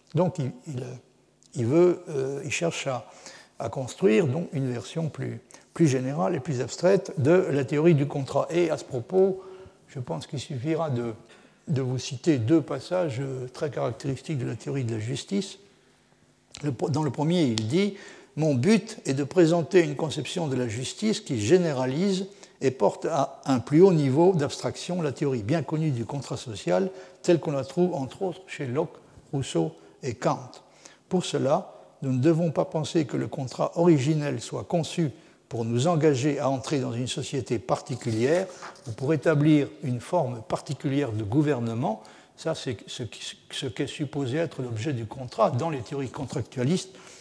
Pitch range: 130-170 Hz